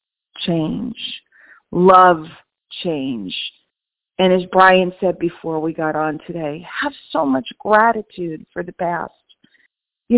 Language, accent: English, American